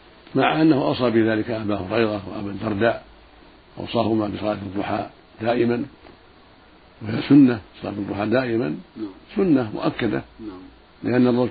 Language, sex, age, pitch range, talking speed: Arabic, male, 50-69, 105-125 Hz, 105 wpm